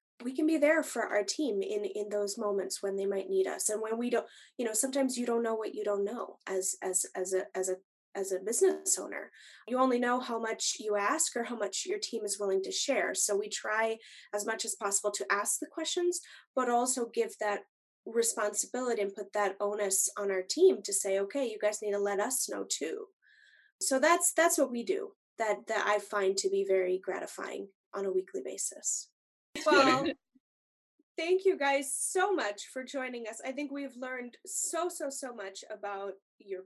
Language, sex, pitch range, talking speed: English, female, 205-280 Hz, 210 wpm